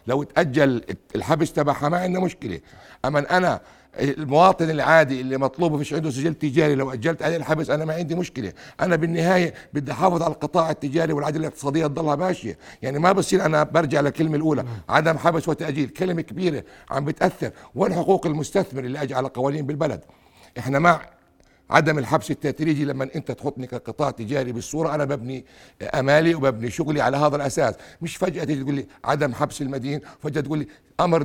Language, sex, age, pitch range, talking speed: Arabic, male, 60-79, 135-160 Hz, 165 wpm